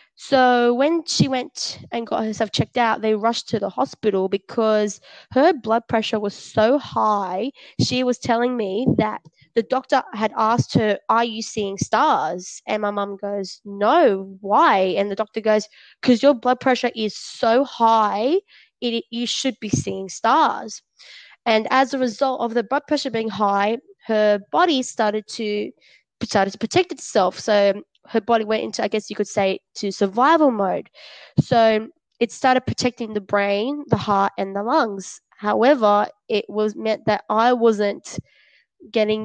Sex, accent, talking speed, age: female, Australian, 165 wpm, 20-39